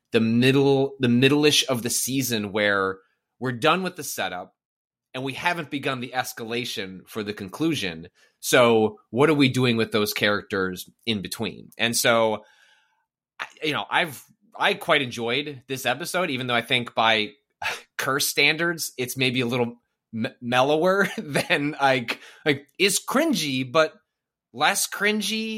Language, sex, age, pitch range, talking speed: English, male, 30-49, 120-160 Hz, 145 wpm